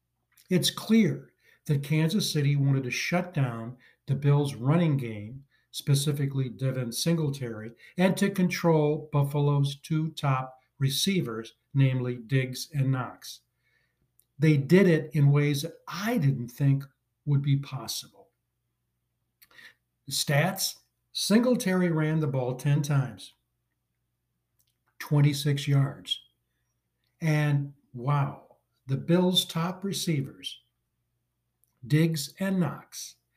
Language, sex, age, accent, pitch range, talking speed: English, male, 60-79, American, 125-155 Hz, 105 wpm